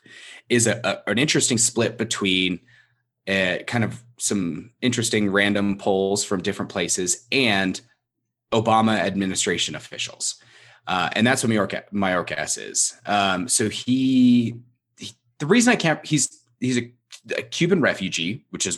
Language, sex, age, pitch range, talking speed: English, male, 30-49, 95-125 Hz, 135 wpm